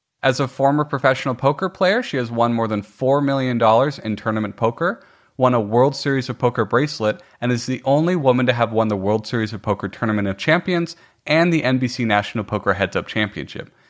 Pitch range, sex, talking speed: 110-140 Hz, male, 205 wpm